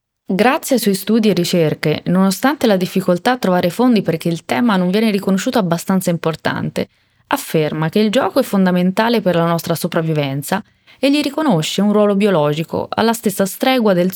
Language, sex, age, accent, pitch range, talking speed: Italian, female, 20-39, native, 165-225 Hz, 170 wpm